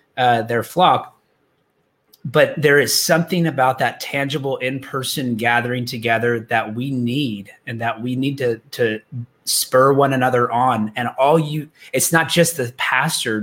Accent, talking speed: American, 150 wpm